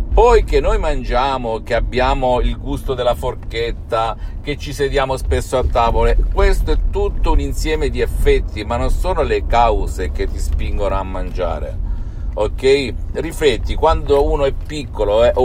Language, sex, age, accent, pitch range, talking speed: Italian, male, 50-69, native, 80-135 Hz, 155 wpm